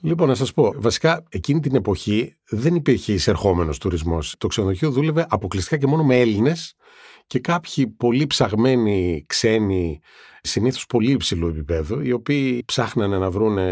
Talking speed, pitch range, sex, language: 150 wpm, 95-135 Hz, male, Greek